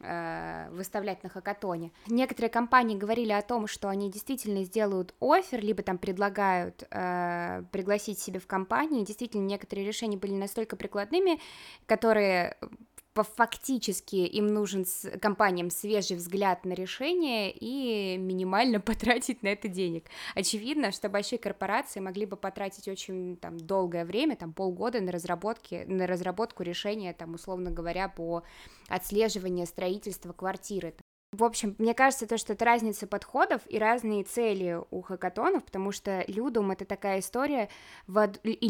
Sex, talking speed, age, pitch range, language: female, 140 wpm, 20-39, 185-225 Hz, Russian